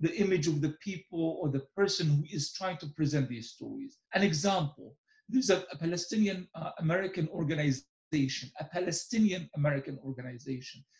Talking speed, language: 145 wpm, English